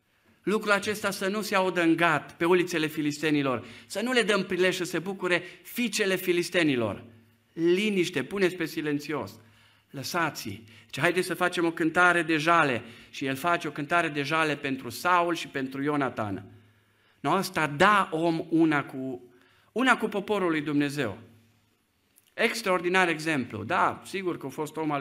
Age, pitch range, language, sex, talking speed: 50-69, 120-190 Hz, Romanian, male, 160 wpm